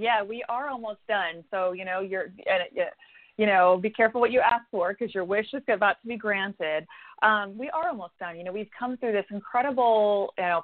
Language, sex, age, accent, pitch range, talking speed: English, female, 30-49, American, 175-225 Hz, 220 wpm